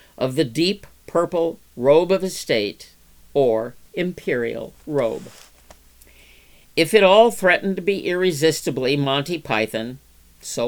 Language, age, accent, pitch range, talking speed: English, 50-69, American, 115-175 Hz, 110 wpm